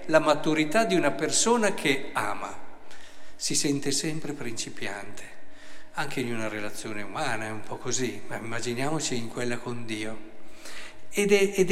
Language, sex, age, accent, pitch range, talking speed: Italian, male, 50-69, native, 125-175 Hz, 140 wpm